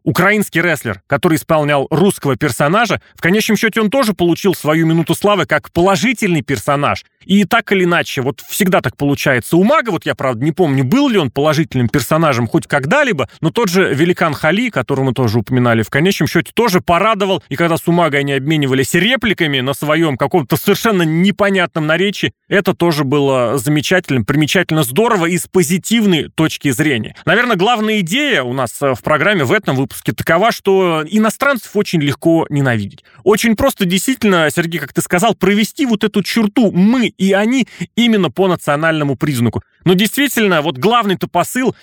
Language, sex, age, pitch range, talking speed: Russian, male, 30-49, 150-205 Hz, 170 wpm